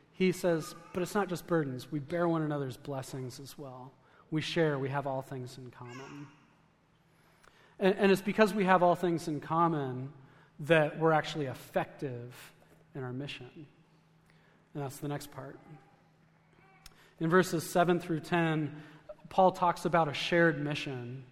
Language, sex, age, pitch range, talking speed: English, male, 30-49, 140-170 Hz, 155 wpm